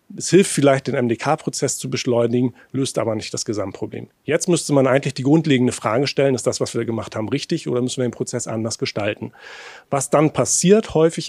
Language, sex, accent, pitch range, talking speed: German, male, German, 120-145 Hz, 200 wpm